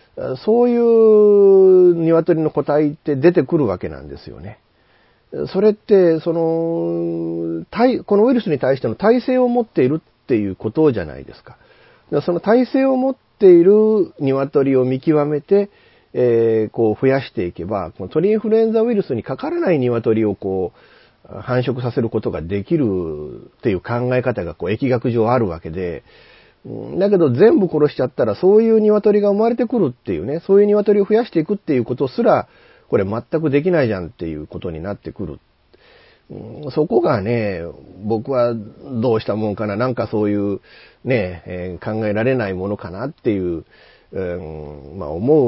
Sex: male